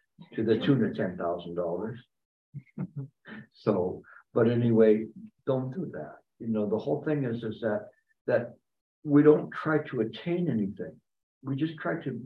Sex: male